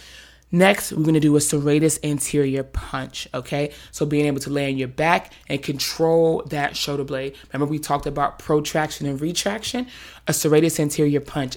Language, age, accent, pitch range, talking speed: English, 20-39, American, 140-155 Hz, 175 wpm